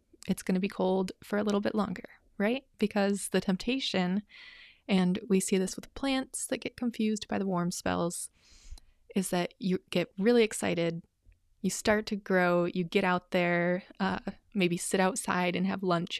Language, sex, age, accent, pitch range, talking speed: English, female, 20-39, American, 175-220 Hz, 180 wpm